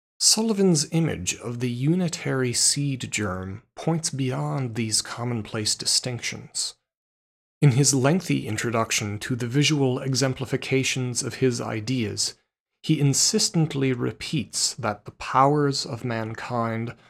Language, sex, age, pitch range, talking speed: English, male, 40-59, 120-145 Hz, 110 wpm